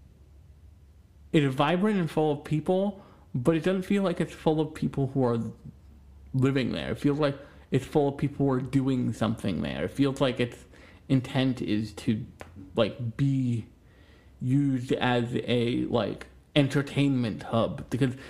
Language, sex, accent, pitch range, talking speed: English, male, American, 115-150 Hz, 155 wpm